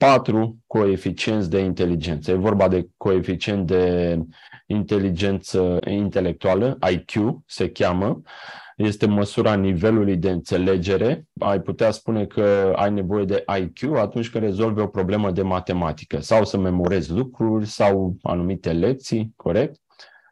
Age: 30-49